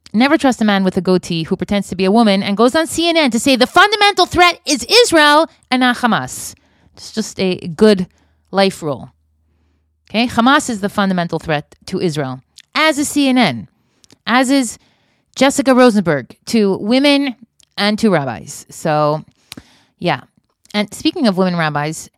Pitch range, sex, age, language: 195-295 Hz, female, 30-49, English